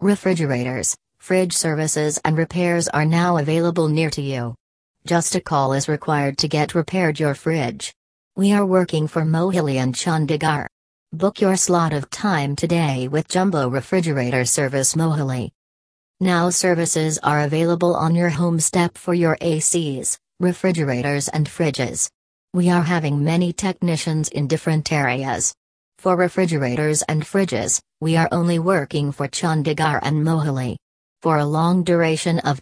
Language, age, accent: English, 40-59, American